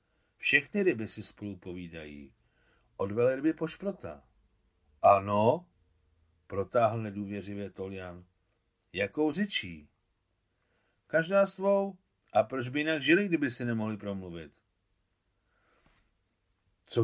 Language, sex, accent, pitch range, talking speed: Czech, male, native, 90-125 Hz, 95 wpm